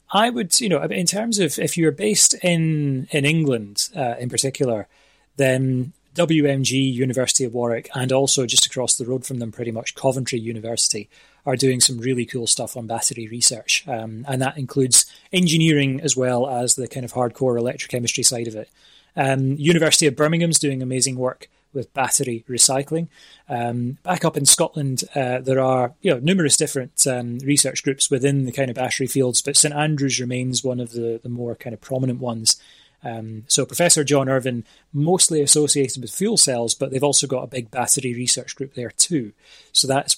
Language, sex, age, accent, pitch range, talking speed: English, male, 20-39, British, 120-140 Hz, 190 wpm